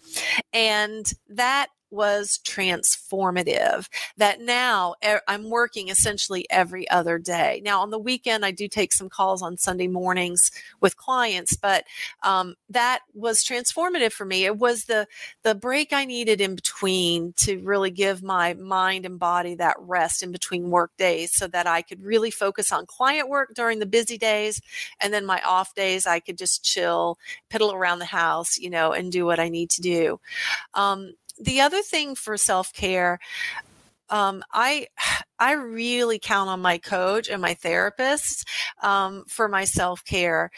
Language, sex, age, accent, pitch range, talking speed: English, female, 40-59, American, 185-220 Hz, 165 wpm